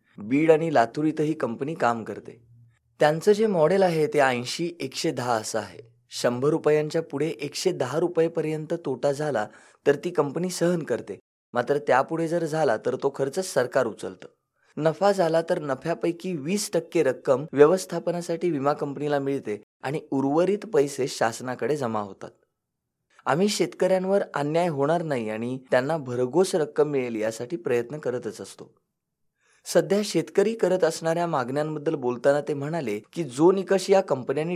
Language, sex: English, male